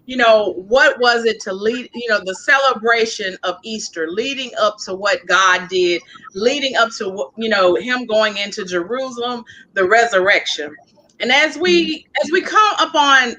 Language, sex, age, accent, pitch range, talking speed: English, female, 30-49, American, 210-285 Hz, 165 wpm